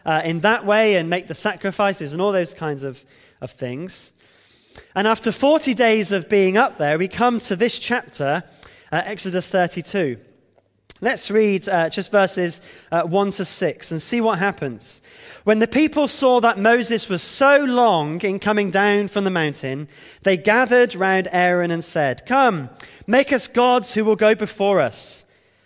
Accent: British